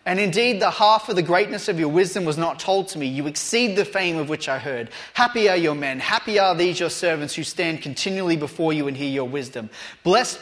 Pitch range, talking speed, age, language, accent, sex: 165-215 Hz, 240 wpm, 30-49, English, Australian, male